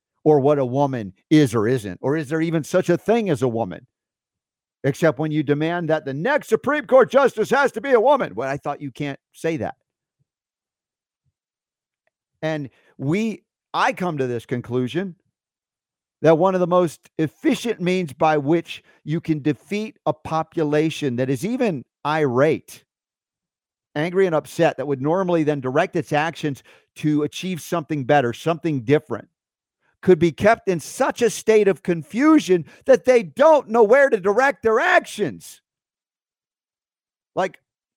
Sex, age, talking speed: male, 50-69, 155 wpm